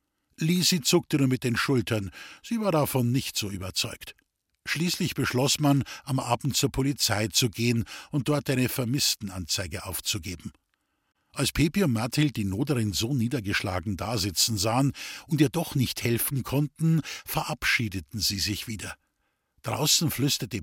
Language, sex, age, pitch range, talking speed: German, male, 50-69, 115-150 Hz, 140 wpm